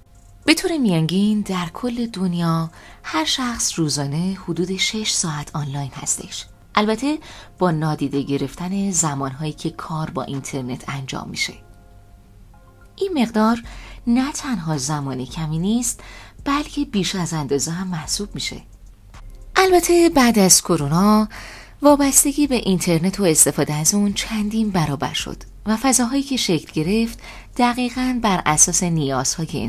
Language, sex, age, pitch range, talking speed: Persian, female, 30-49, 145-230 Hz, 125 wpm